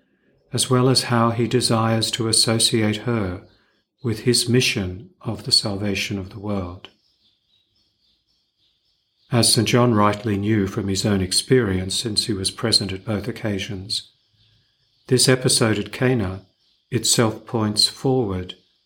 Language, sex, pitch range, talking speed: English, male, 100-115 Hz, 130 wpm